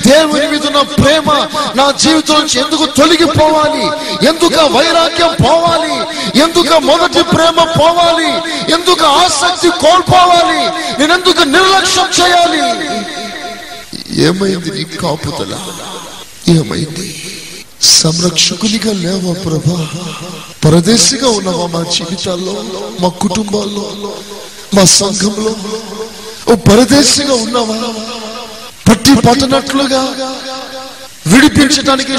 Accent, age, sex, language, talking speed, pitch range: native, 30-49, male, Telugu, 70 wpm, 210-275 Hz